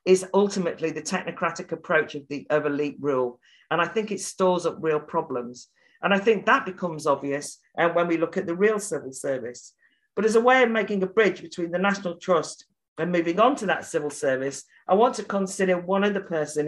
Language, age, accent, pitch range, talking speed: English, 50-69, British, 155-205 Hz, 205 wpm